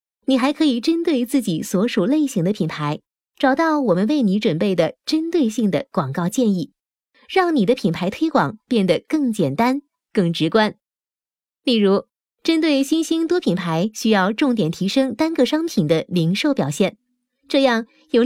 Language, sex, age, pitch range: Chinese, female, 20-39, 190-285 Hz